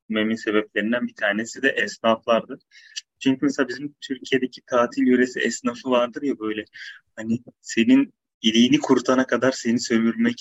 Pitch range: 110-145 Hz